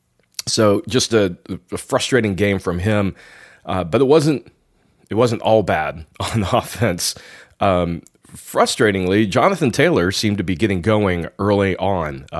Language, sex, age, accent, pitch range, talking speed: English, male, 30-49, American, 85-105 Hz, 140 wpm